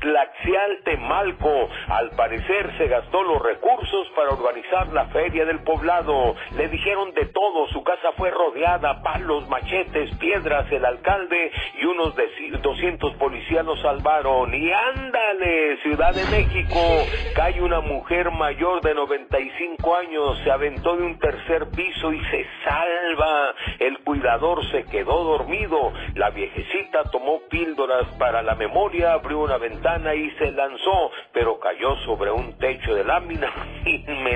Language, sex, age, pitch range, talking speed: Spanish, male, 50-69, 140-190 Hz, 145 wpm